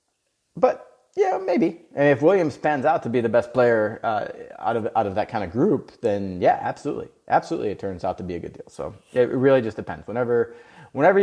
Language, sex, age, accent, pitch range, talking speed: English, male, 30-49, American, 100-125 Hz, 220 wpm